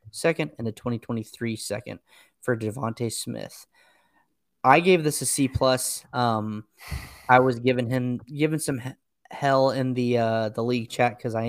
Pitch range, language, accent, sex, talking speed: 120-145 Hz, English, American, male, 155 wpm